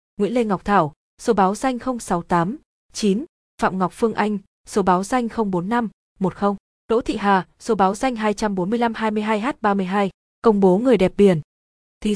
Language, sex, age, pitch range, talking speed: Vietnamese, female, 20-39, 190-230 Hz, 145 wpm